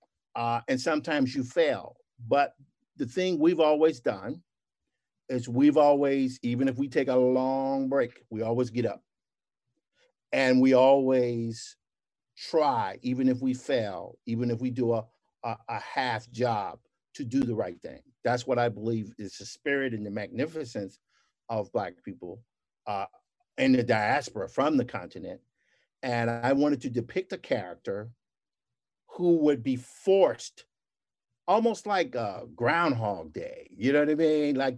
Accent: American